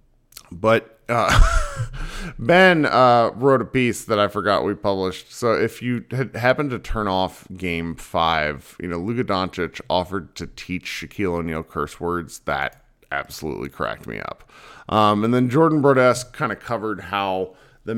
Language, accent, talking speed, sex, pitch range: English, American, 160 wpm, male, 85-125 Hz